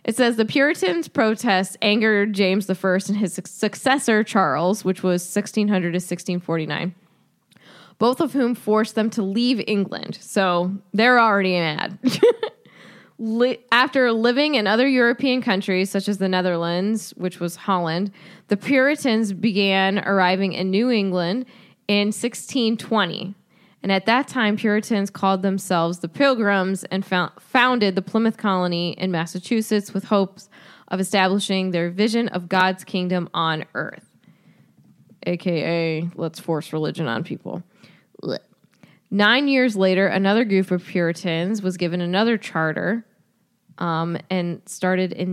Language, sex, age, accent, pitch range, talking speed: English, female, 10-29, American, 180-225 Hz, 130 wpm